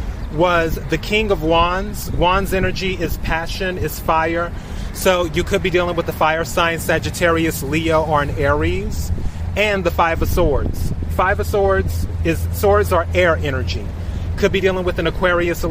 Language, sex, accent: English, male, American